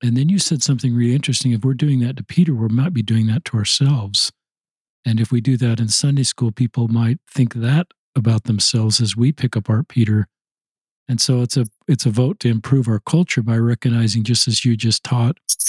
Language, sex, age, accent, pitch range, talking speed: English, male, 50-69, American, 115-140 Hz, 220 wpm